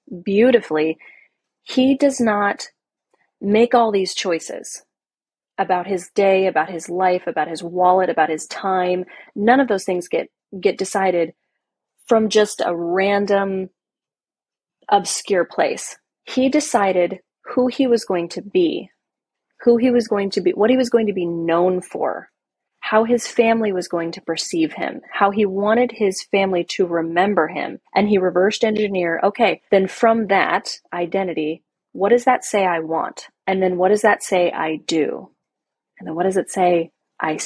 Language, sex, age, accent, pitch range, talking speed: English, female, 30-49, American, 180-230 Hz, 160 wpm